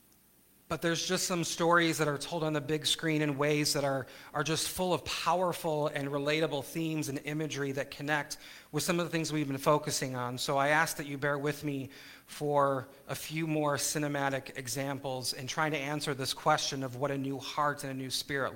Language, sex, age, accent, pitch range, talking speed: English, male, 40-59, American, 140-165 Hz, 215 wpm